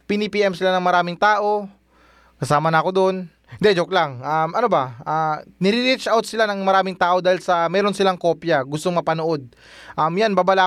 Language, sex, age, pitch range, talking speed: Filipino, male, 20-39, 160-195 Hz, 180 wpm